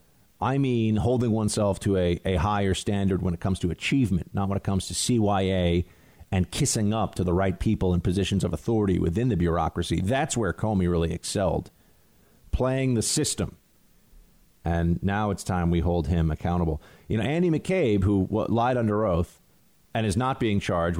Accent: American